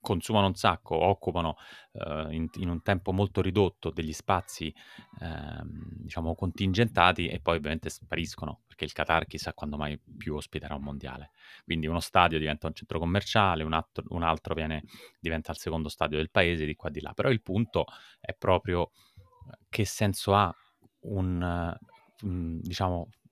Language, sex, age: Italian, male, 30-49